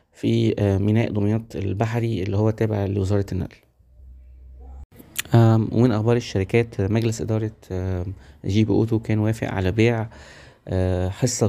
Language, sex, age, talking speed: Arabic, male, 20-39, 115 wpm